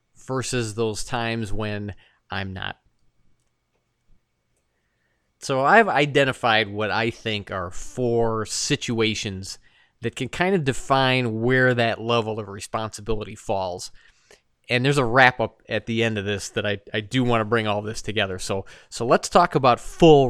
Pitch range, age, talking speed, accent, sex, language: 110-140 Hz, 30-49, 155 wpm, American, male, English